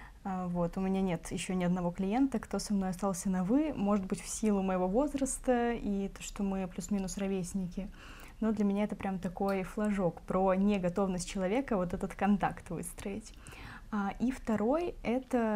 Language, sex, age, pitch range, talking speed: Russian, female, 20-39, 185-220 Hz, 175 wpm